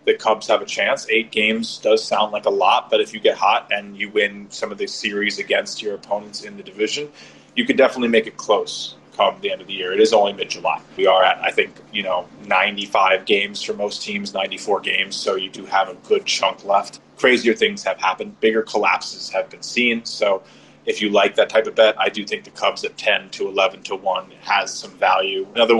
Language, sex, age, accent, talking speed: English, male, 30-49, American, 235 wpm